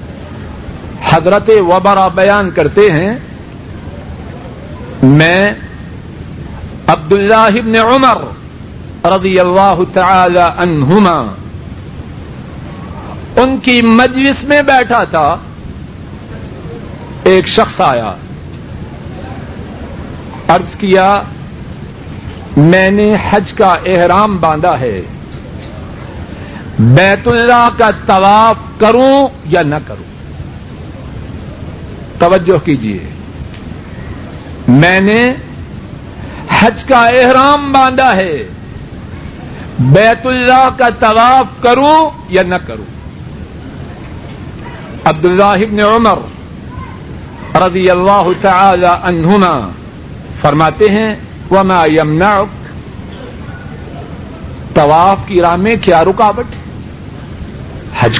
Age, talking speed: 60-79, 80 wpm